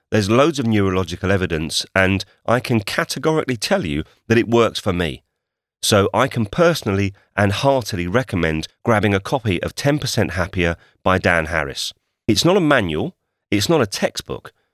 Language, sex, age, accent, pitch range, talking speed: English, male, 40-59, British, 90-120 Hz, 165 wpm